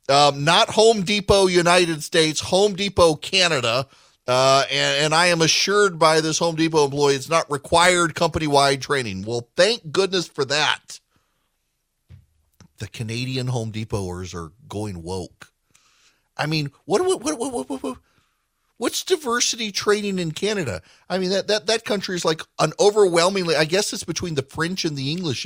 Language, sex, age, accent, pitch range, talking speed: English, male, 40-59, American, 100-165 Hz, 165 wpm